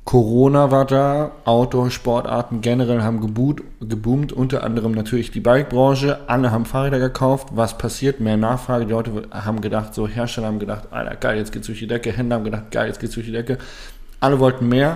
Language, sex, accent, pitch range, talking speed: German, male, German, 110-130 Hz, 200 wpm